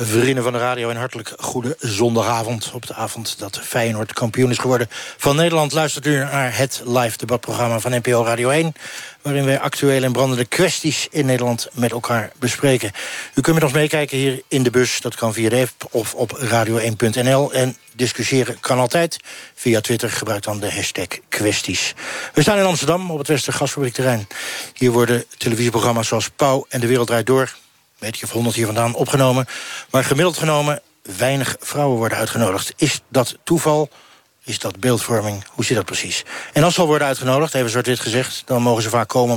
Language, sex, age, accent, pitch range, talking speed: Dutch, male, 60-79, Dutch, 115-135 Hz, 185 wpm